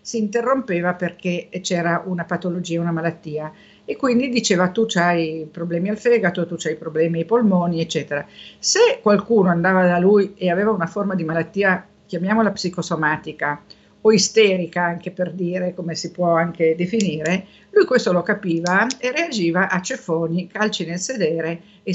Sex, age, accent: female, 50-69, native